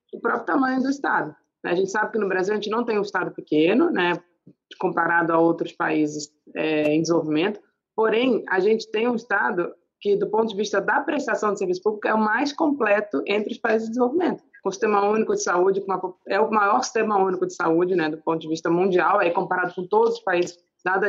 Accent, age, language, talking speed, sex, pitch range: Brazilian, 20-39, Portuguese, 215 wpm, female, 180-230 Hz